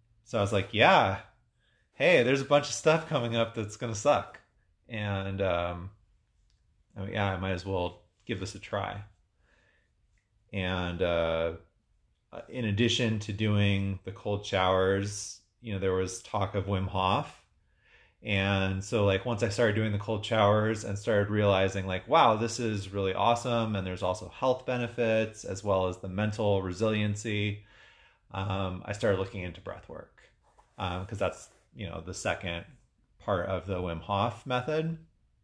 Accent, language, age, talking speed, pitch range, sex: American, English, 30-49, 160 wpm, 95-110 Hz, male